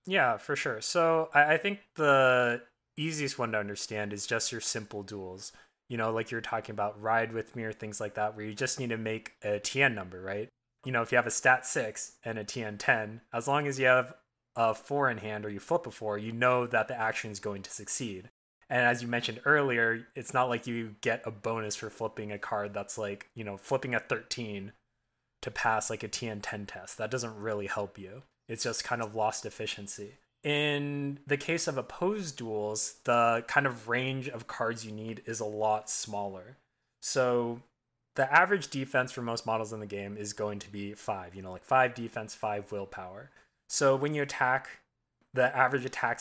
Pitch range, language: 110-130 Hz, English